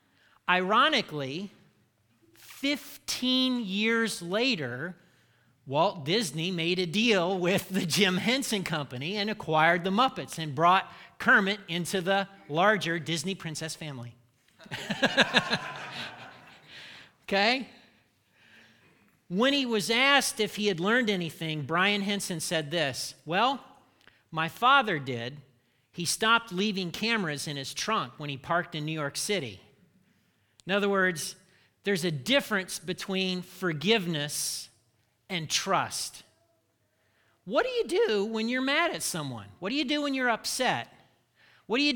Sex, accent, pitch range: male, American, 155-215 Hz